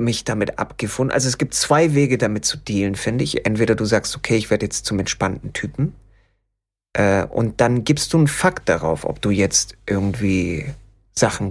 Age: 30-49